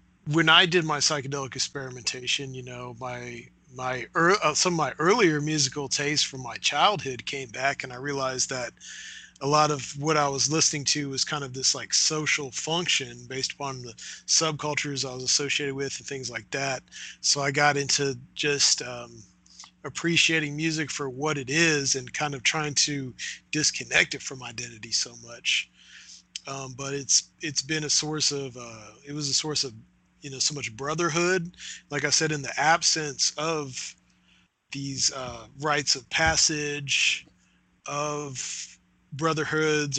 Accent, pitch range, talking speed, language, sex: American, 125-150 Hz, 165 wpm, English, male